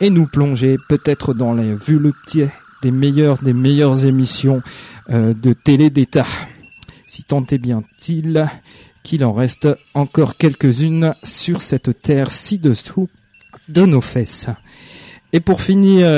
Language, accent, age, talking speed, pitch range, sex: French, French, 40-59, 130 wpm, 135-165 Hz, male